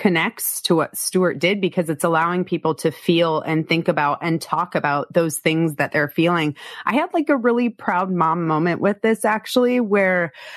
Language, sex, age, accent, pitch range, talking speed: English, female, 30-49, American, 150-175 Hz, 195 wpm